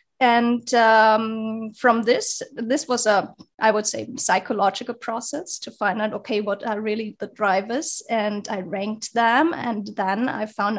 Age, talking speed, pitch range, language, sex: 30-49, 160 wpm, 215-255 Hz, English, female